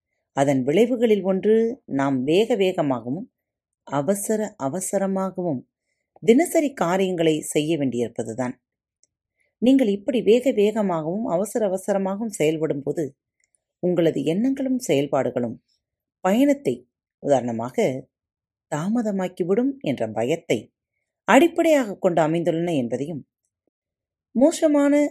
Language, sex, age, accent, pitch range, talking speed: Tamil, female, 30-49, native, 135-215 Hz, 70 wpm